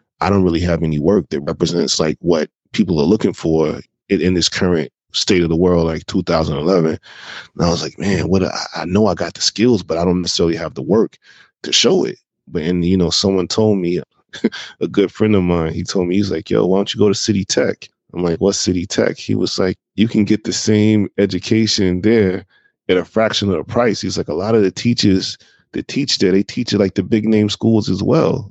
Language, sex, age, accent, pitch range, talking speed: English, male, 20-39, American, 85-105 Hz, 235 wpm